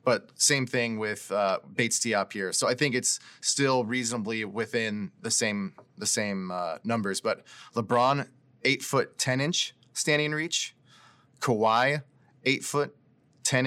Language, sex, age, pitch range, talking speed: English, male, 20-39, 115-140 Hz, 150 wpm